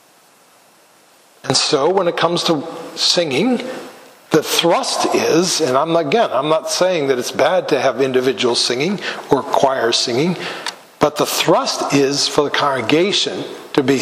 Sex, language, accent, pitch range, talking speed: male, English, American, 150-185 Hz, 150 wpm